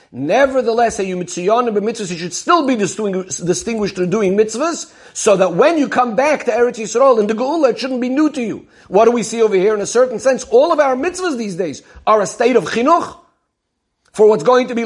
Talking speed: 215 wpm